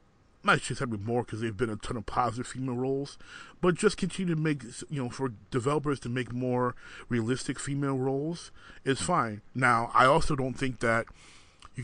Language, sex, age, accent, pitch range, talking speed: English, male, 30-49, American, 115-140 Hz, 190 wpm